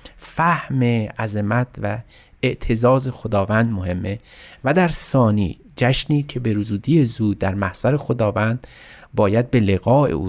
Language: Persian